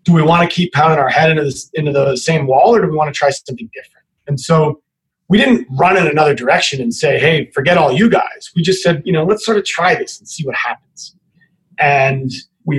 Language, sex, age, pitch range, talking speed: English, male, 30-49, 140-175 Hz, 250 wpm